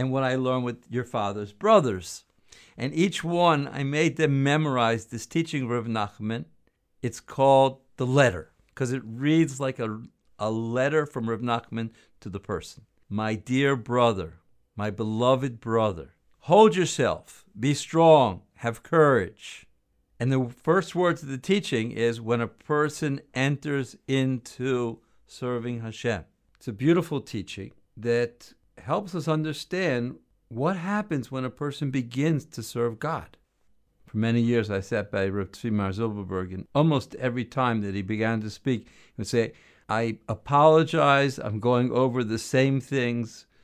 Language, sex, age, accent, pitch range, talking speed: English, male, 50-69, American, 110-140 Hz, 150 wpm